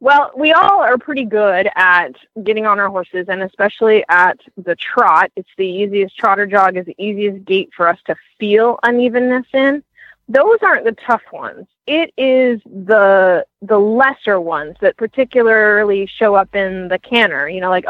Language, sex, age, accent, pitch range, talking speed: English, female, 20-39, American, 190-235 Hz, 175 wpm